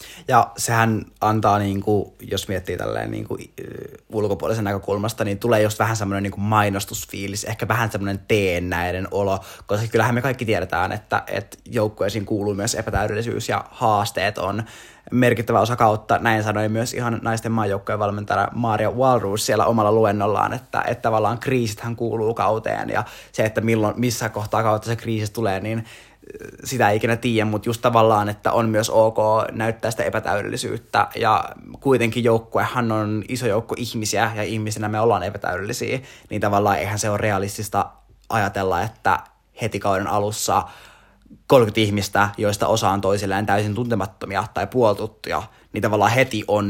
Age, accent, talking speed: 20-39, native, 145 wpm